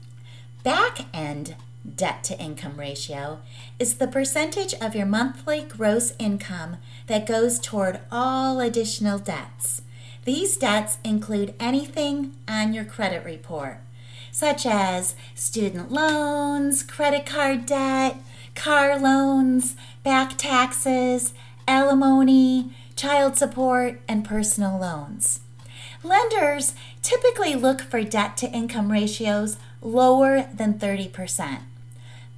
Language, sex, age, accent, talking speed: English, female, 30-49, American, 95 wpm